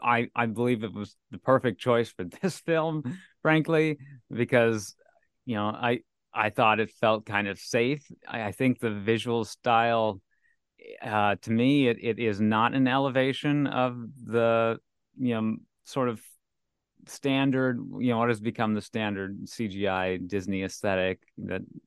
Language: English